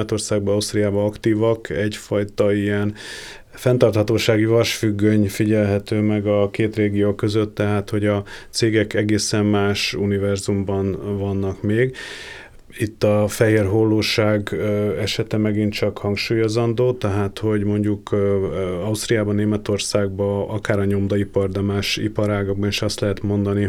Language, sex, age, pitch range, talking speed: Hungarian, male, 30-49, 100-105 Hz, 110 wpm